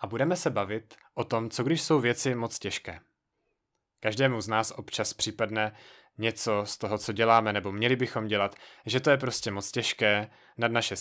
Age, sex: 30-49, male